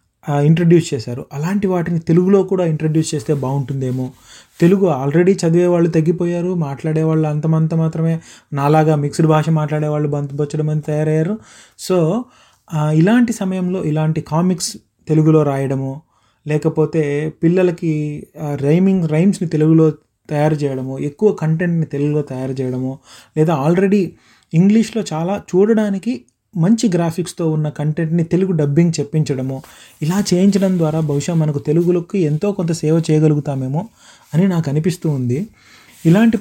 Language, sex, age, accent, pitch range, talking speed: Telugu, male, 30-49, native, 150-180 Hz, 120 wpm